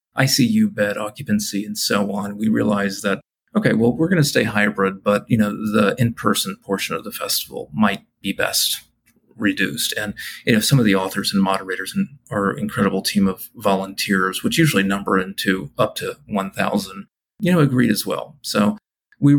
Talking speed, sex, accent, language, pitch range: 180 wpm, male, American, English, 105-140 Hz